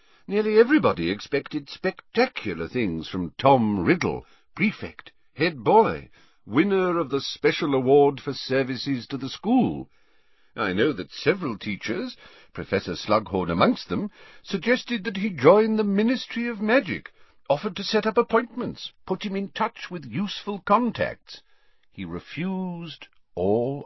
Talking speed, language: 135 wpm, English